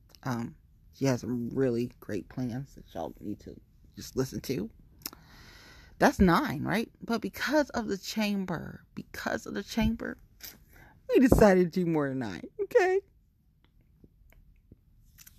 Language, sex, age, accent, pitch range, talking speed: English, female, 30-49, American, 120-160 Hz, 135 wpm